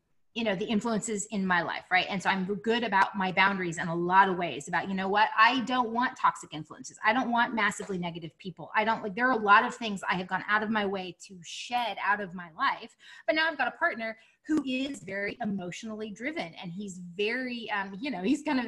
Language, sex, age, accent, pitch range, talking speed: English, female, 20-39, American, 195-235 Hz, 245 wpm